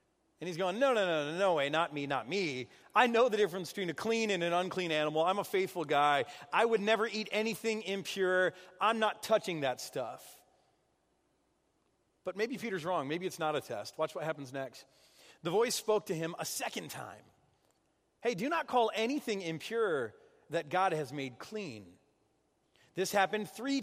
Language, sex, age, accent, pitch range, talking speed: English, male, 40-59, American, 150-205 Hz, 185 wpm